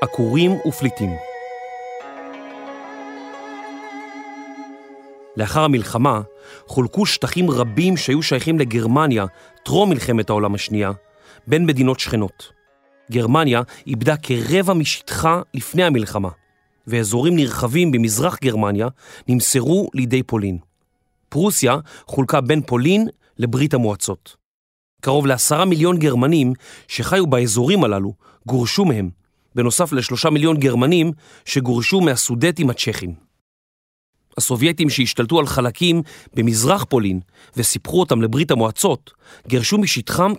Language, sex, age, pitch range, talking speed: Hebrew, male, 40-59, 120-160 Hz, 95 wpm